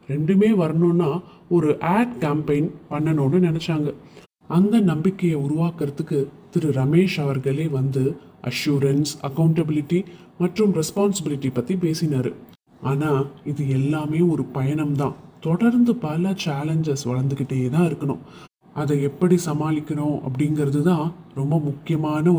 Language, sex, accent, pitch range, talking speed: Tamil, male, native, 140-170 Hz, 95 wpm